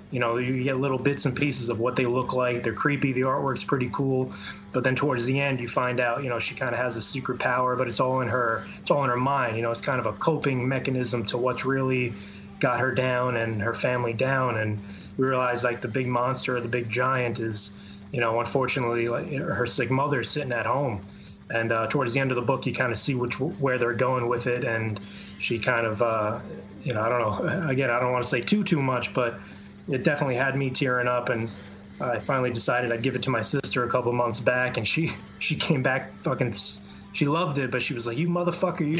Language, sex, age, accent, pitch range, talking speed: English, male, 20-39, American, 120-140 Hz, 240 wpm